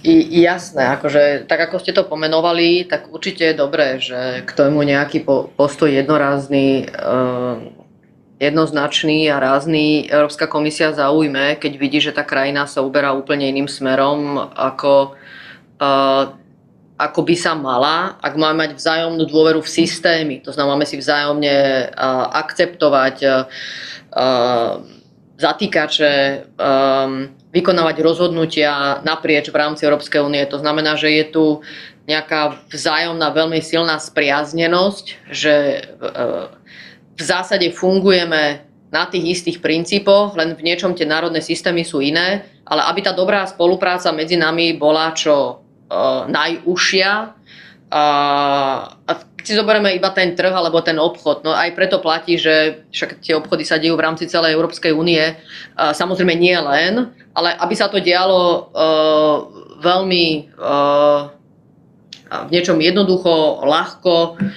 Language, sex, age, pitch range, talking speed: Slovak, female, 30-49, 145-175 Hz, 130 wpm